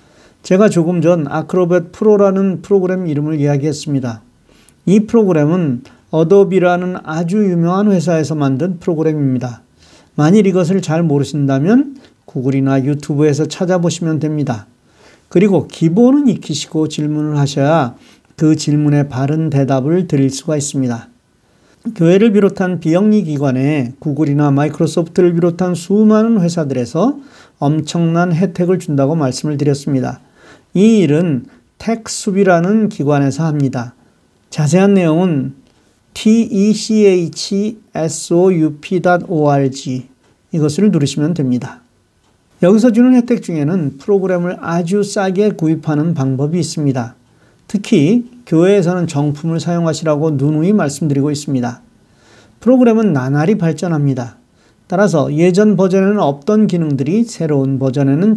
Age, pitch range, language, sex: 40-59, 145-190 Hz, Korean, male